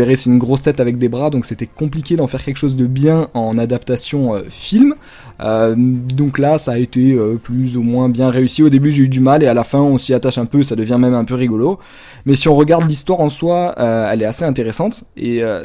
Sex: male